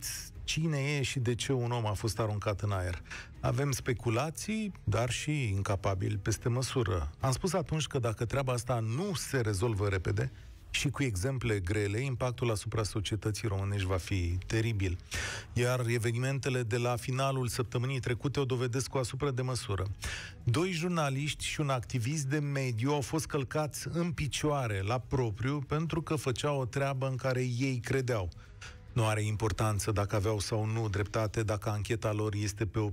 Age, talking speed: 30-49, 165 wpm